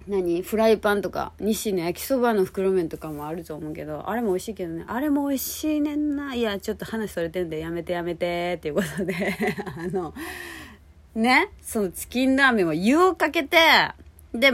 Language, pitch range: Japanese, 175-245 Hz